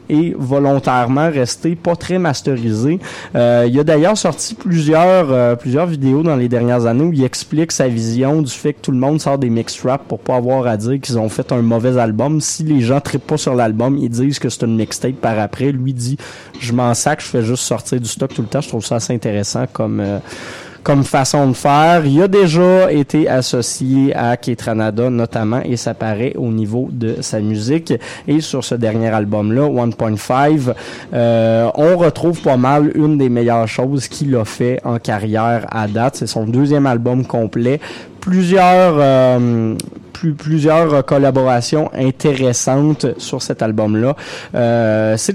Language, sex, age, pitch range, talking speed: French, male, 20-39, 115-150 Hz, 180 wpm